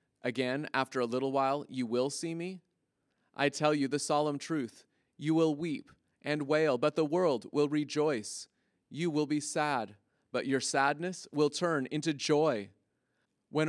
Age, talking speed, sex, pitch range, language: 30-49, 160 wpm, male, 135-160 Hz, English